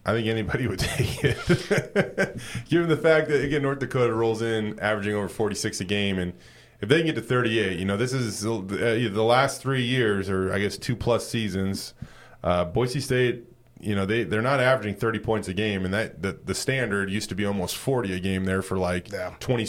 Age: 20-39